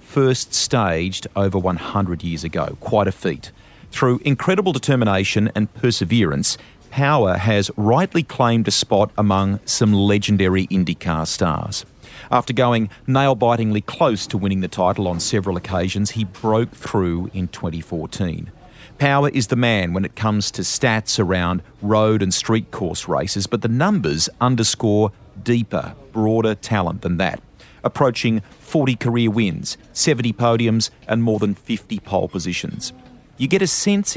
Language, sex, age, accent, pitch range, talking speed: English, male, 40-59, Australian, 95-125 Hz, 140 wpm